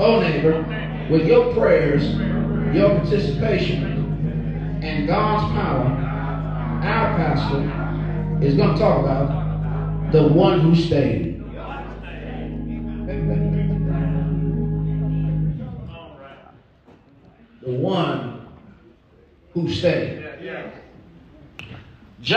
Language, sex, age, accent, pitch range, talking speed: English, male, 50-69, American, 145-230 Hz, 60 wpm